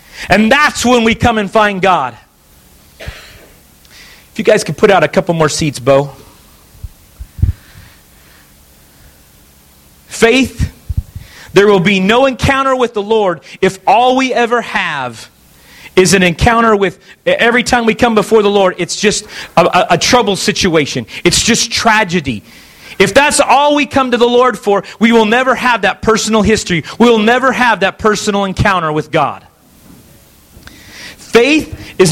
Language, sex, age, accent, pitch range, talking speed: English, male, 40-59, American, 135-225 Hz, 150 wpm